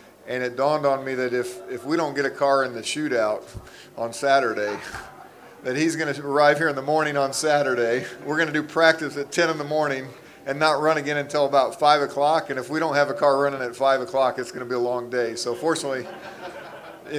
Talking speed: 235 wpm